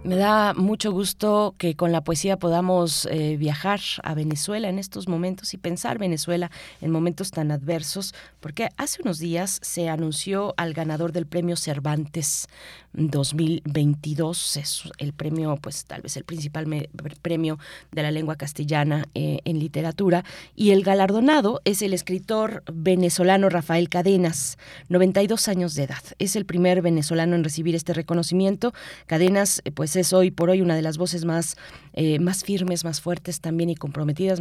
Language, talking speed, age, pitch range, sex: Spanish, 160 wpm, 30-49, 155-185 Hz, female